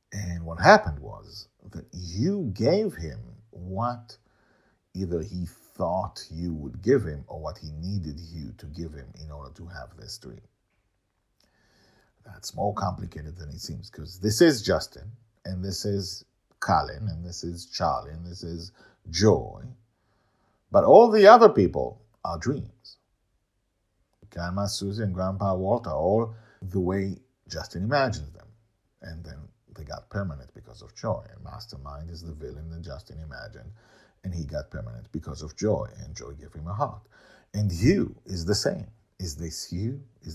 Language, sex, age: English, male, 50-69